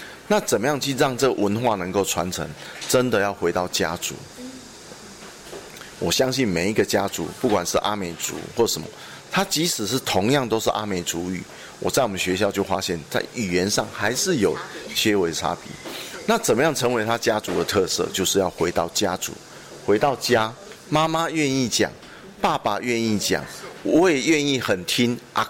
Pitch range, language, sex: 100-155 Hz, Chinese, male